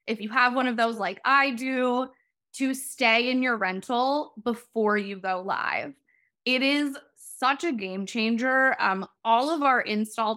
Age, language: 10-29, English